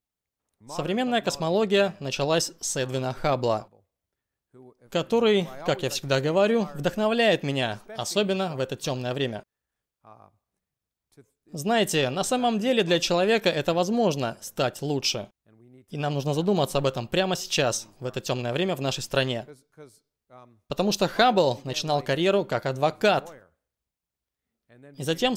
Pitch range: 130-190 Hz